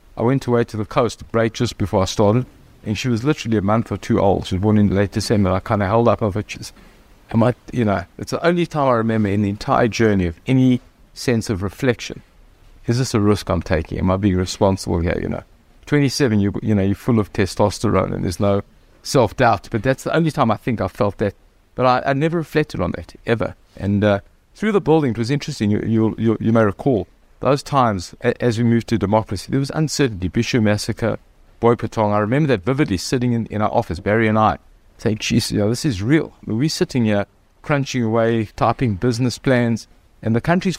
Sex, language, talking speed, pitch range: male, English, 225 wpm, 100-125 Hz